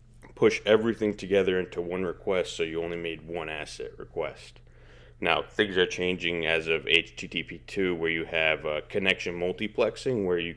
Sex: male